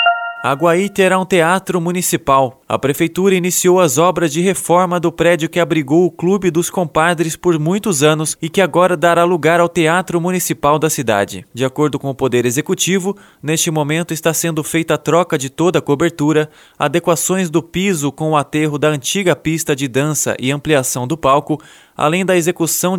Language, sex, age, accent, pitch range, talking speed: Portuguese, male, 20-39, Brazilian, 150-175 Hz, 175 wpm